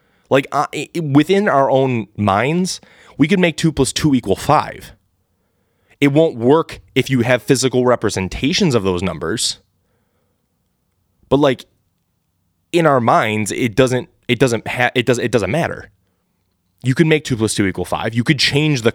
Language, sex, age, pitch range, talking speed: English, male, 20-39, 100-145 Hz, 170 wpm